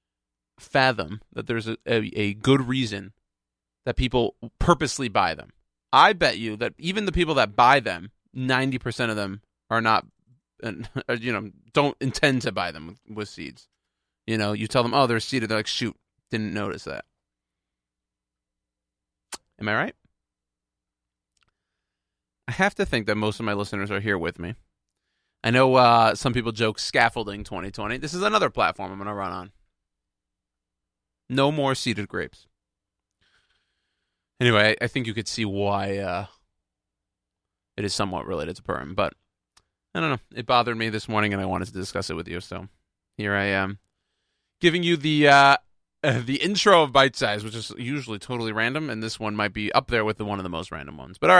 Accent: American